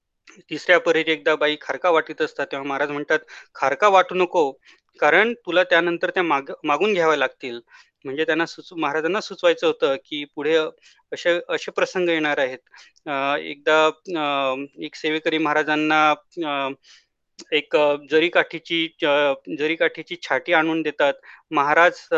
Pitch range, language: 145-165 Hz, Marathi